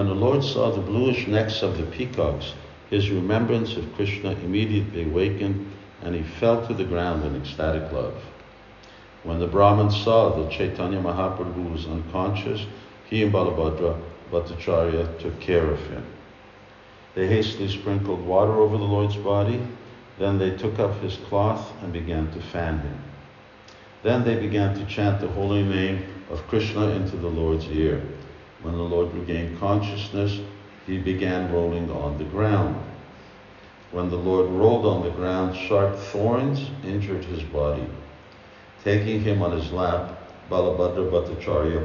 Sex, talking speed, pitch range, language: male, 150 wpm, 85-105 Hz, Hungarian